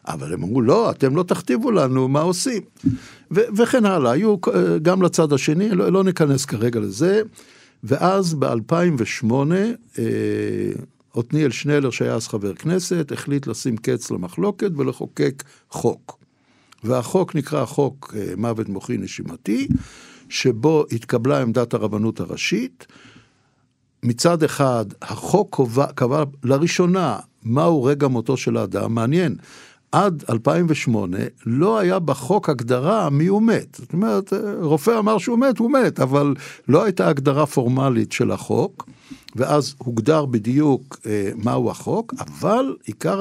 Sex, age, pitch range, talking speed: male, 60-79, 120-175 Hz, 130 wpm